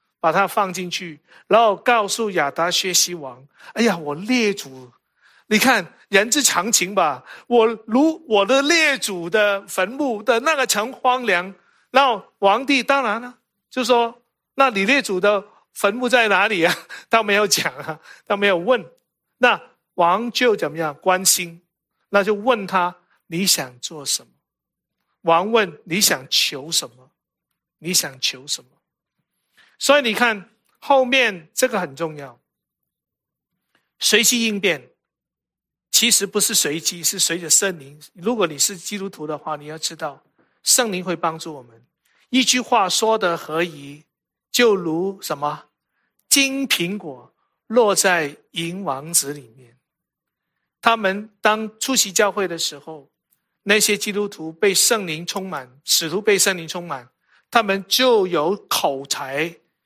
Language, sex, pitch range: English, male, 165-230 Hz